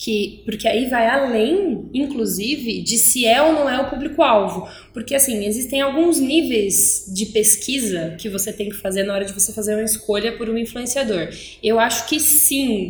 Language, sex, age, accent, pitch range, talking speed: Portuguese, female, 20-39, Brazilian, 185-235 Hz, 180 wpm